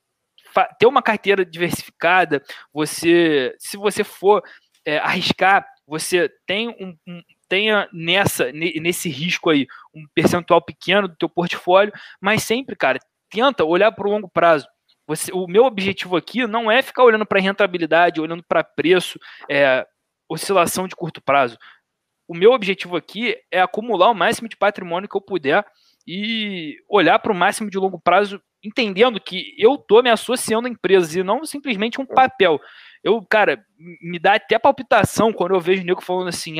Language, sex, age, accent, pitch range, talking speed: Portuguese, male, 20-39, Brazilian, 175-225 Hz, 150 wpm